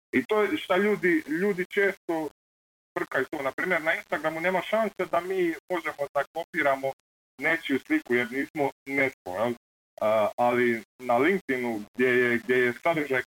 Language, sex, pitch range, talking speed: Croatian, male, 125-175 Hz, 155 wpm